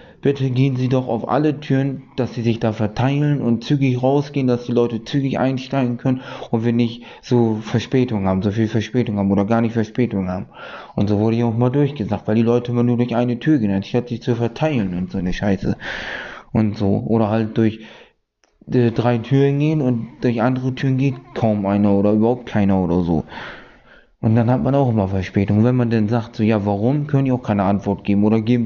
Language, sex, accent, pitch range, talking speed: German, male, German, 105-125 Hz, 215 wpm